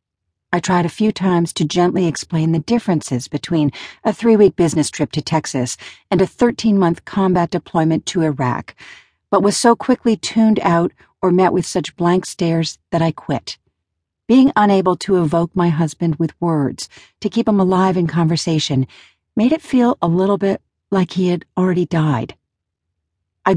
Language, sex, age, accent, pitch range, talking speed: English, female, 50-69, American, 150-195 Hz, 165 wpm